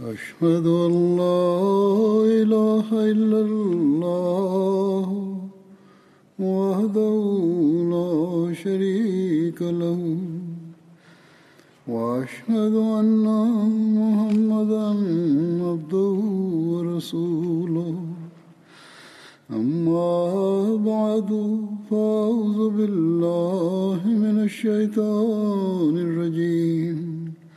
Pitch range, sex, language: 170-215 Hz, male, Bulgarian